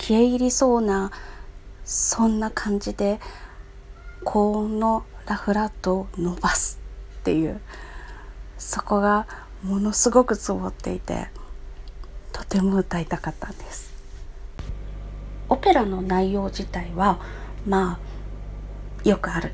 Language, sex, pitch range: Japanese, female, 180-225 Hz